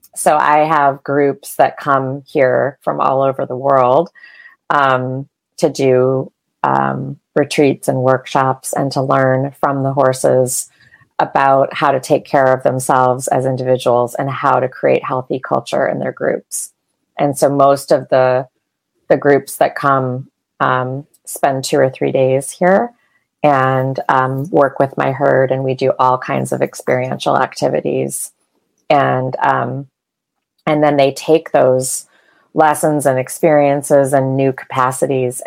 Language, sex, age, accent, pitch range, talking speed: English, female, 30-49, American, 130-145 Hz, 145 wpm